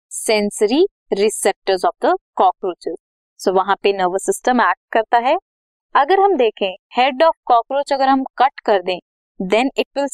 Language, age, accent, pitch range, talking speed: Hindi, 20-39, native, 210-315 Hz, 130 wpm